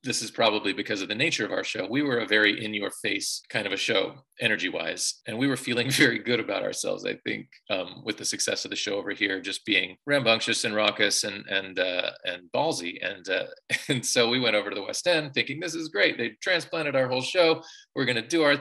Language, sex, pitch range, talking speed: English, male, 105-145 Hz, 240 wpm